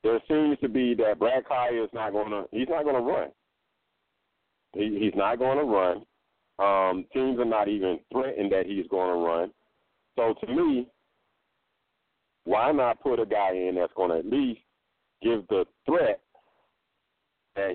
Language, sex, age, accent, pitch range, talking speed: English, male, 40-59, American, 90-110 Hz, 185 wpm